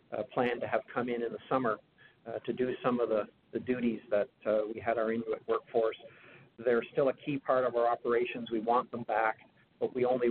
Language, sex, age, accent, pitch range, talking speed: English, male, 50-69, American, 115-130 Hz, 225 wpm